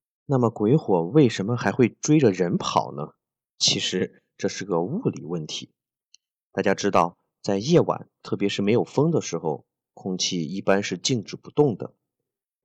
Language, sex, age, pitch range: Chinese, male, 30-49, 95-120 Hz